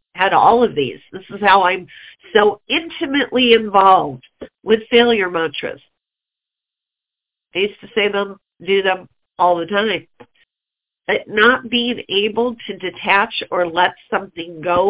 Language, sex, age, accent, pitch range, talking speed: English, female, 50-69, American, 190-245 Hz, 135 wpm